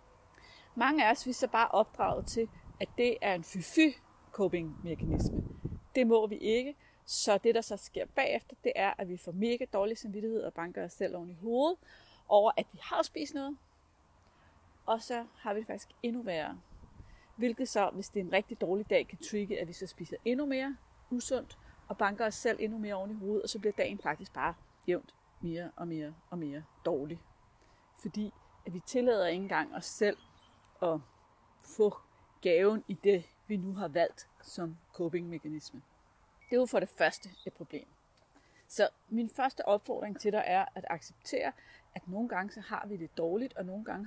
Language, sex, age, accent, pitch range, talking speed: Danish, female, 30-49, native, 170-230 Hz, 190 wpm